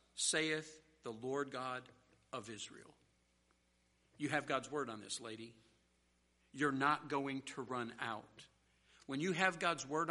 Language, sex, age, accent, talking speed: English, male, 60-79, American, 140 wpm